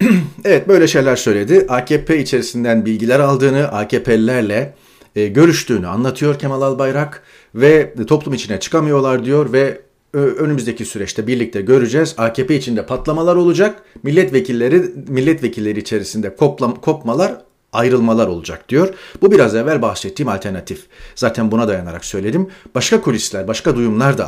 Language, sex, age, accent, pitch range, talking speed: Turkish, male, 40-59, native, 115-155 Hz, 120 wpm